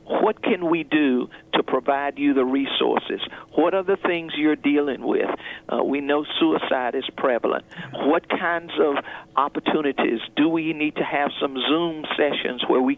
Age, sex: 50-69, male